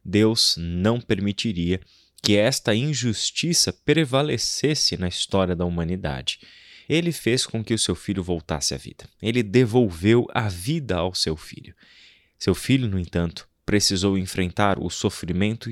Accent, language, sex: Brazilian, Portuguese, male